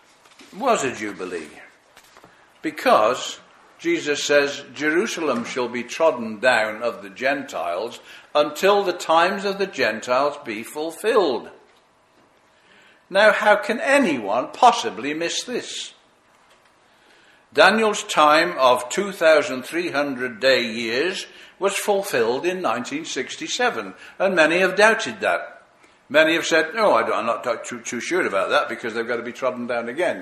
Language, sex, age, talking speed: English, male, 60-79, 130 wpm